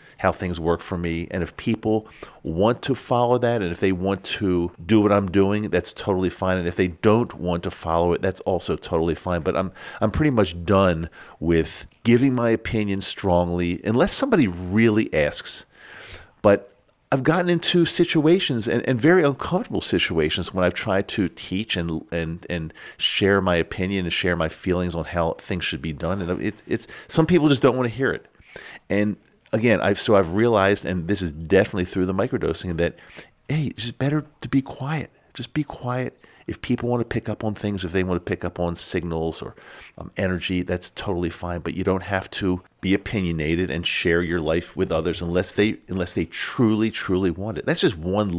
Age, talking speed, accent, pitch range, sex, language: 50-69, 200 wpm, American, 85-110 Hz, male, English